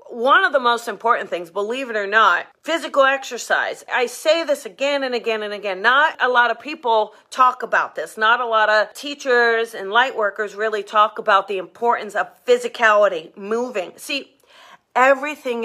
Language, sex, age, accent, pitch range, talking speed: English, female, 40-59, American, 225-280 Hz, 175 wpm